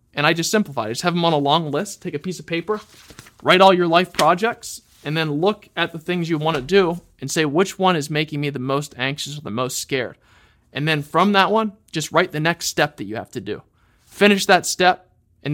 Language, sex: English, male